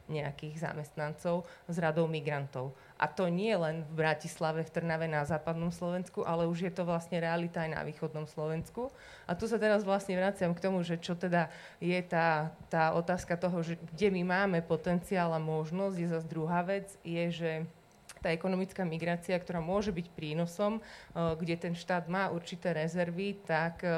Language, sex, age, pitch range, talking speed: Slovak, female, 30-49, 160-180 Hz, 175 wpm